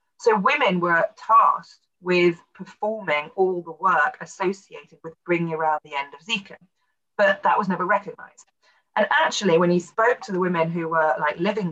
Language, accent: English, British